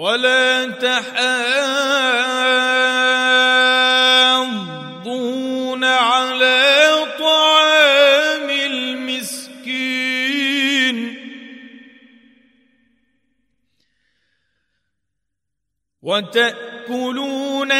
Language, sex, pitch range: Arabic, male, 230-255 Hz